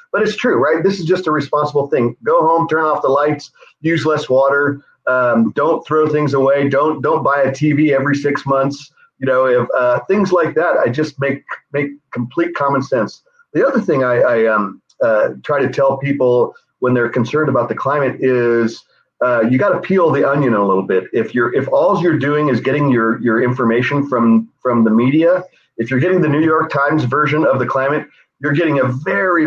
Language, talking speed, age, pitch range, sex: English, 210 wpm, 40-59, 125-155 Hz, male